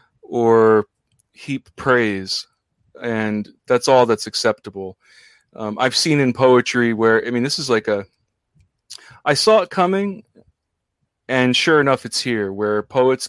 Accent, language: American, English